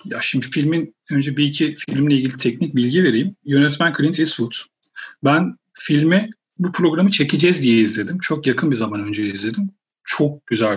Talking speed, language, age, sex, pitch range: 160 wpm, Turkish, 40-59, male, 125-165 Hz